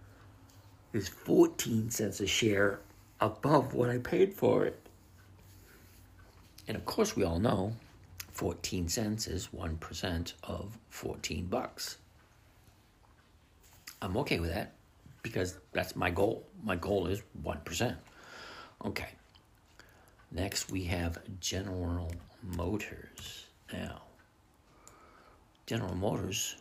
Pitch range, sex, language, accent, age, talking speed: 85-105 Hz, male, English, American, 60-79, 100 wpm